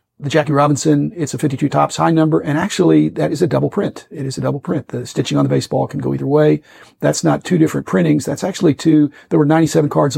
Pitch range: 130-155 Hz